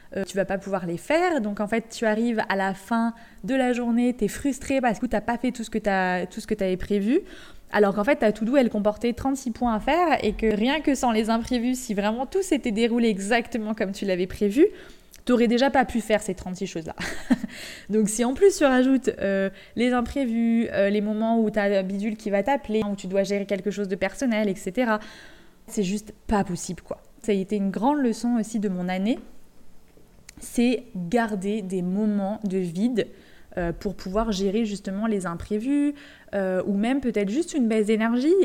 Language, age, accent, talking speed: French, 20-39, French, 210 wpm